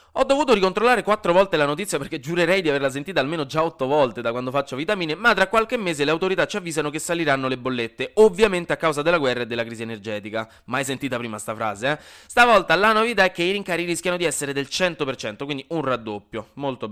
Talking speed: 225 wpm